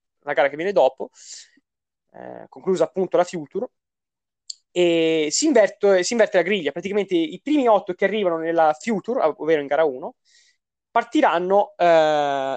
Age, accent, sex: 20-39, native, male